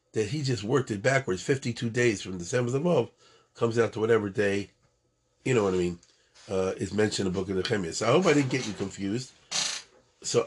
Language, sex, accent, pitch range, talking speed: English, male, American, 105-130 Hz, 225 wpm